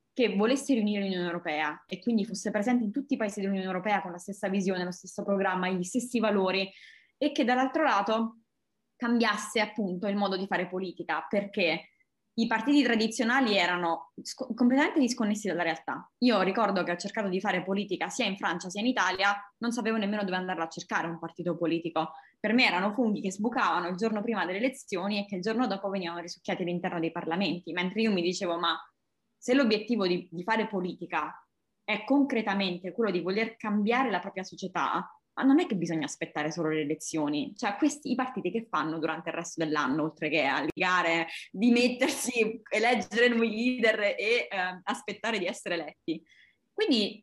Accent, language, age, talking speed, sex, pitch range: native, Italian, 20-39, 180 wpm, female, 180-235 Hz